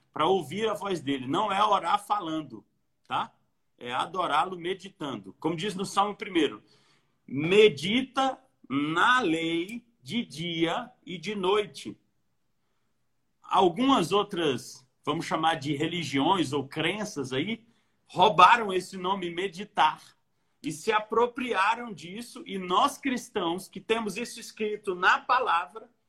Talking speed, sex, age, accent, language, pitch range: 120 wpm, male, 40-59, Brazilian, Portuguese, 165-215 Hz